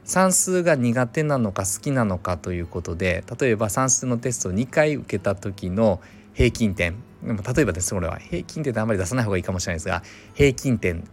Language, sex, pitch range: Japanese, male, 95-130 Hz